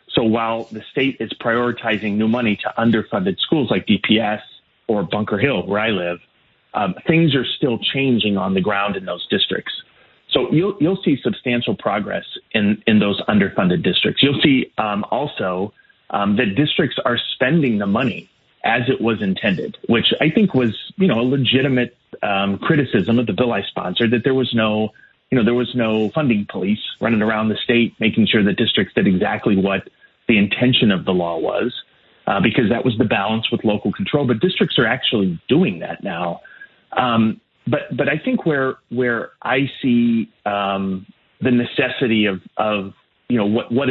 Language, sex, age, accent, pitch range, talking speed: English, male, 30-49, American, 105-130 Hz, 180 wpm